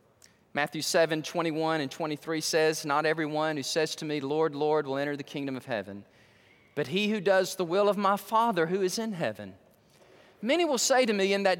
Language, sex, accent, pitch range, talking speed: English, male, American, 160-260 Hz, 205 wpm